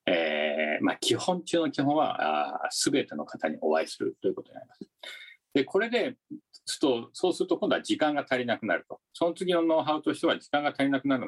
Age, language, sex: 50-69, Japanese, male